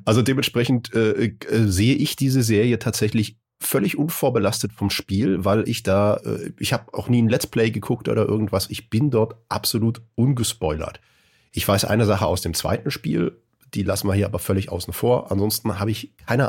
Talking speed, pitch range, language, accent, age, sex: 190 wpm, 95-115 Hz, German, German, 40-59, male